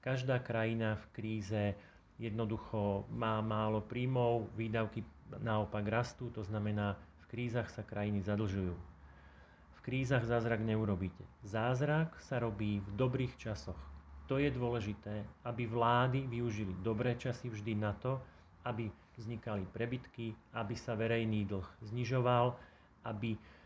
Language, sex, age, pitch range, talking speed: Slovak, male, 40-59, 105-120 Hz, 120 wpm